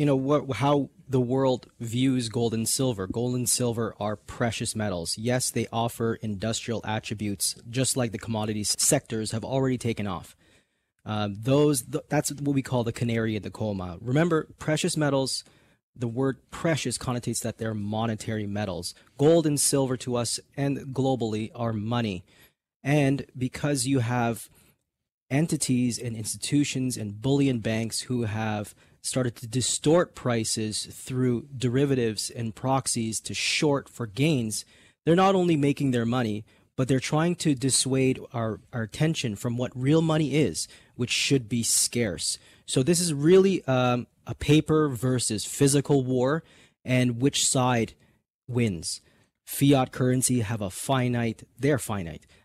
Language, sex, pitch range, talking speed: English, male, 110-140 Hz, 150 wpm